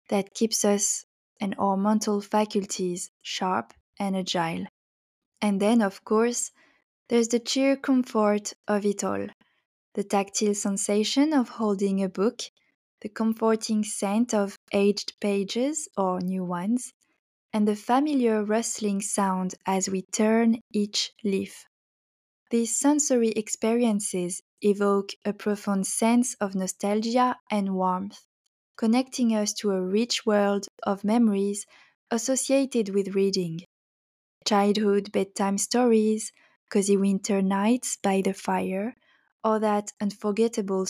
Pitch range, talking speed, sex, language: 195-225 Hz, 120 wpm, female, English